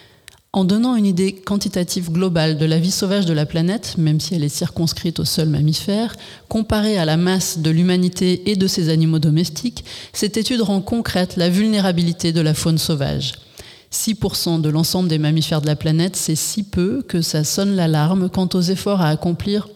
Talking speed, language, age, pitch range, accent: 190 wpm, French, 30-49, 160-195 Hz, French